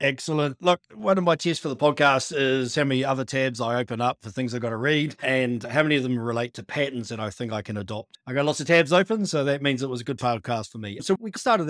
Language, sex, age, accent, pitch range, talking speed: English, male, 40-59, Australian, 110-140 Hz, 285 wpm